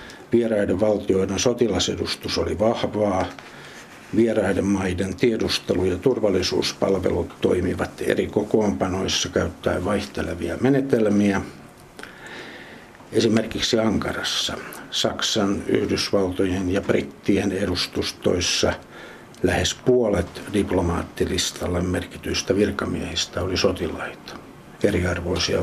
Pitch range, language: 90-105 Hz, Finnish